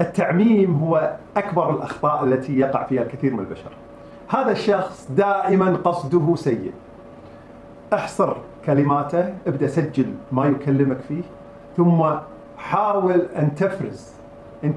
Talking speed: 110 wpm